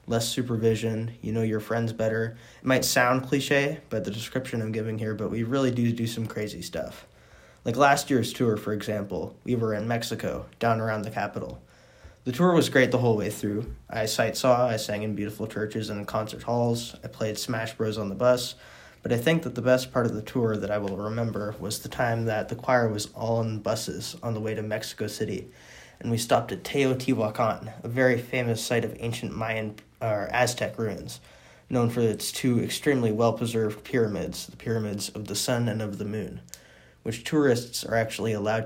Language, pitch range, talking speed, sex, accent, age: English, 105-120 Hz, 205 wpm, male, American, 20-39